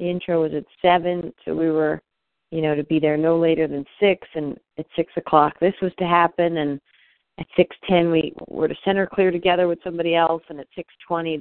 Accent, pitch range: American, 165-200 Hz